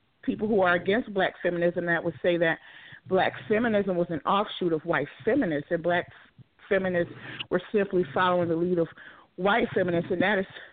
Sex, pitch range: female, 170-190 Hz